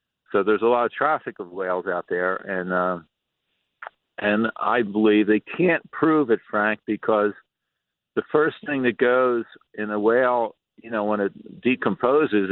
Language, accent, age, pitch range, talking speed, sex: English, American, 50-69, 100-120 Hz, 165 wpm, male